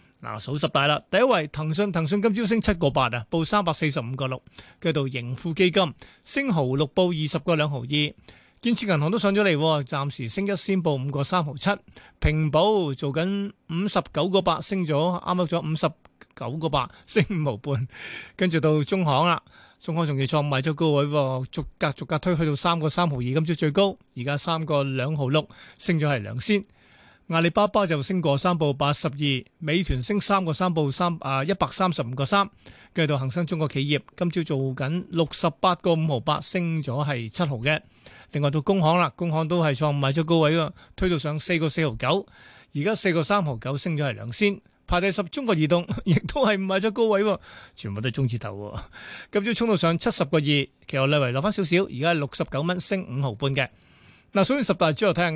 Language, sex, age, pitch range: Chinese, male, 30-49, 140-180 Hz